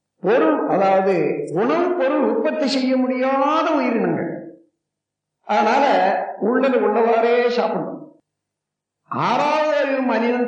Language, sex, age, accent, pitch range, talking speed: Tamil, male, 50-69, native, 215-295 Hz, 80 wpm